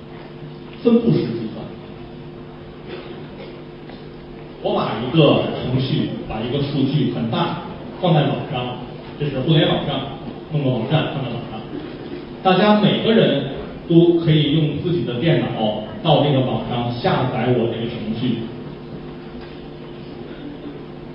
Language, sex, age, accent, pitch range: Chinese, male, 40-59, native, 125-185 Hz